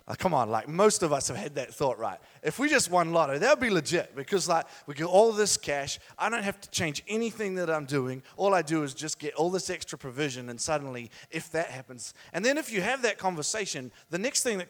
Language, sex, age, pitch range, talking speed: English, male, 30-49, 145-185 Hz, 255 wpm